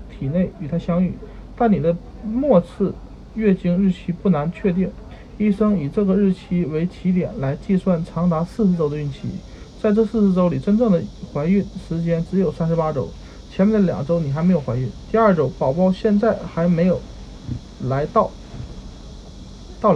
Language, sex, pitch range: Chinese, male, 145-195 Hz